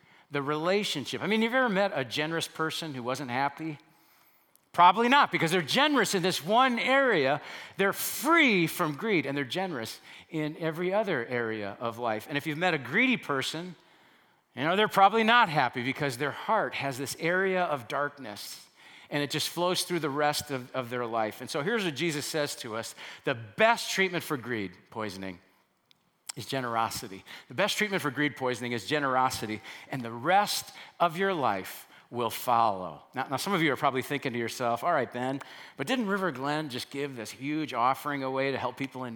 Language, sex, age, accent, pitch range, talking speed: English, male, 40-59, American, 130-180 Hz, 195 wpm